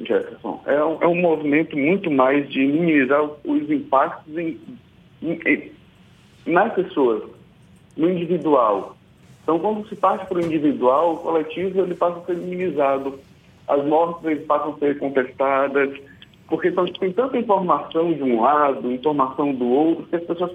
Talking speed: 155 wpm